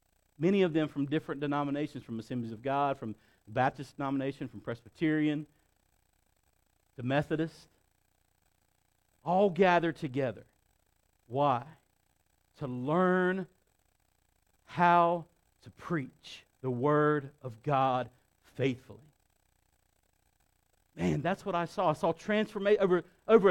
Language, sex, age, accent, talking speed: English, male, 50-69, American, 105 wpm